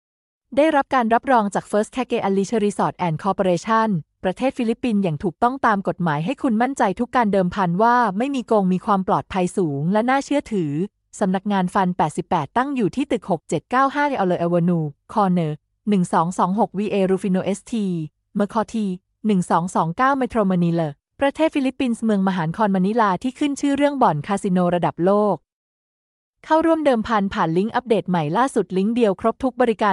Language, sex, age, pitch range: Thai, female, 20-39, 185-235 Hz